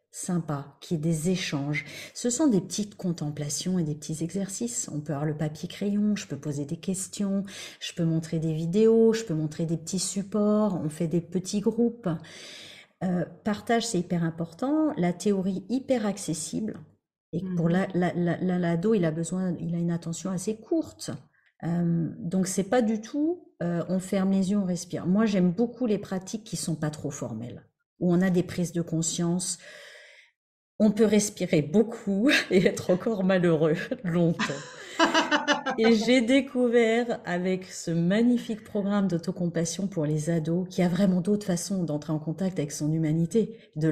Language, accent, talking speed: French, French, 175 wpm